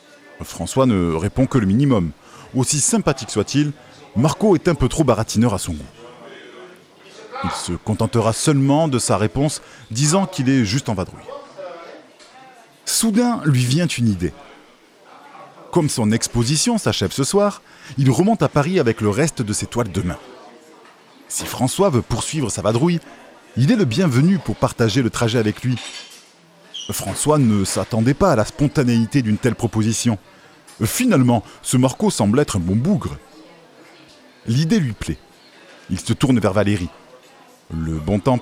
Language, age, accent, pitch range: French, 20-39, French, 110-150 Hz